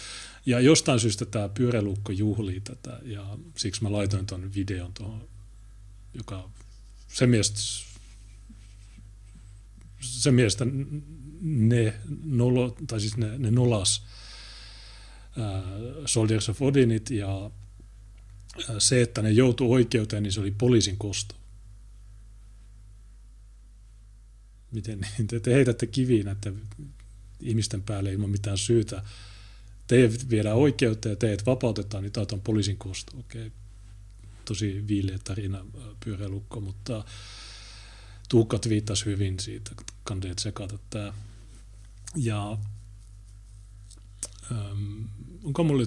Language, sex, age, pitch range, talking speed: Finnish, male, 30-49, 100-115 Hz, 100 wpm